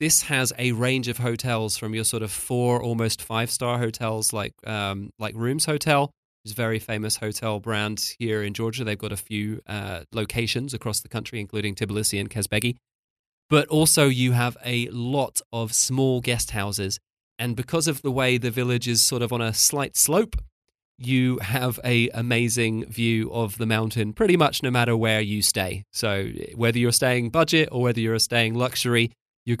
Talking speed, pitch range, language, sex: 185 wpm, 110-125 Hz, English, male